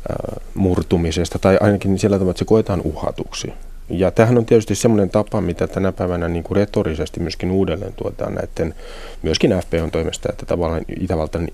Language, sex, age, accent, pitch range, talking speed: Finnish, male, 30-49, native, 85-105 Hz, 155 wpm